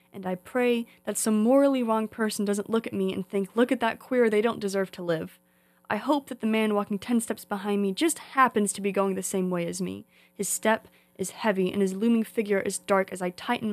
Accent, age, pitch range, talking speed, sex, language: American, 20-39, 195-230 Hz, 245 wpm, female, English